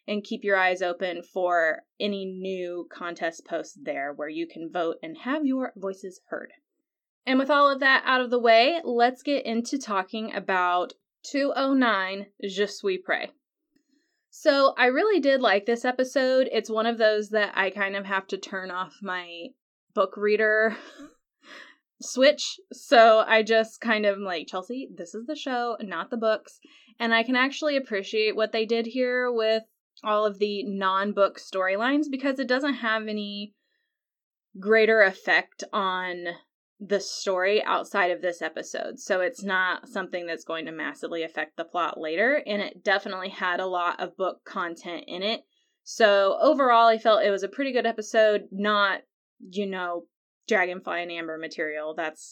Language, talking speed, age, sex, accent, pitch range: English, 165 wpm, 20-39, female, American, 185-255 Hz